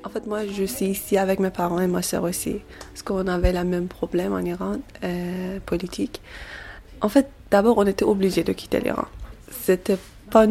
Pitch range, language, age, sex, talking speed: 180-200 Hz, French, 20-39, female, 200 wpm